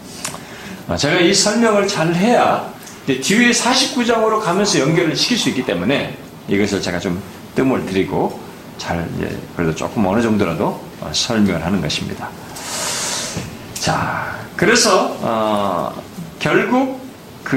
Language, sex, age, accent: Korean, male, 40-59, native